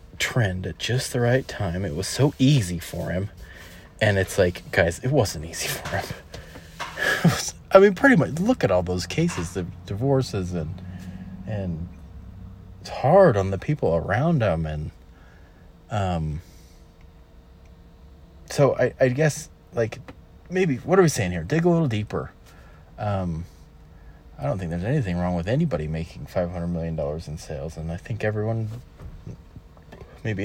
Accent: American